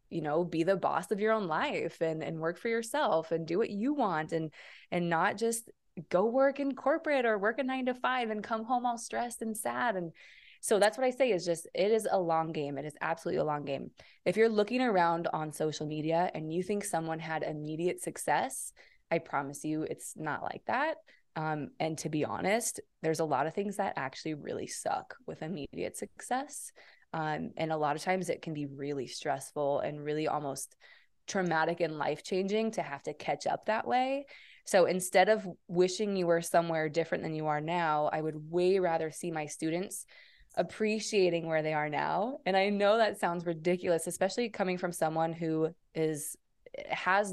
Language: English